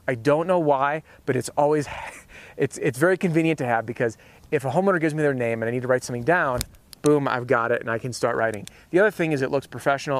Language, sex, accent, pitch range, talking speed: English, male, American, 125-160 Hz, 260 wpm